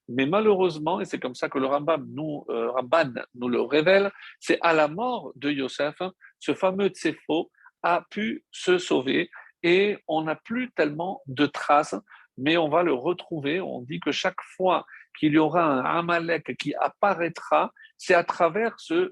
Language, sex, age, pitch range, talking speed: French, male, 50-69, 145-200 Hz, 175 wpm